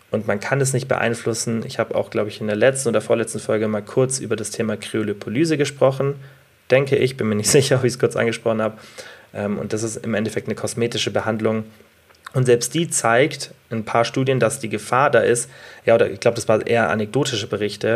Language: German